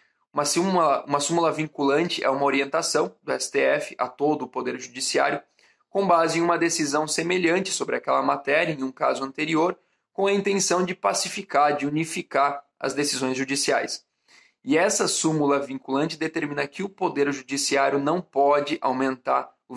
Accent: Brazilian